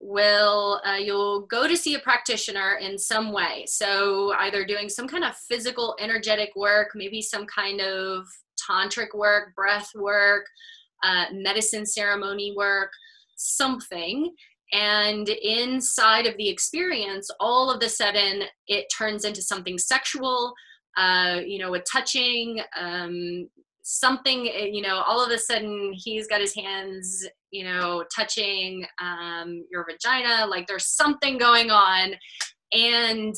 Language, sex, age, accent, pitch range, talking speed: English, female, 20-39, American, 190-235 Hz, 135 wpm